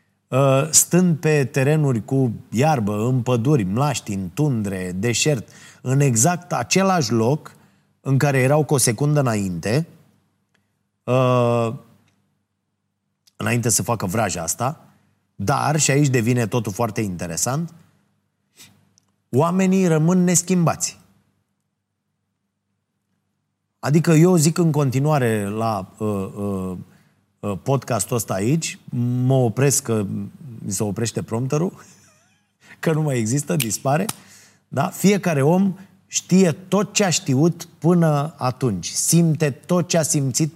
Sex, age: male, 30-49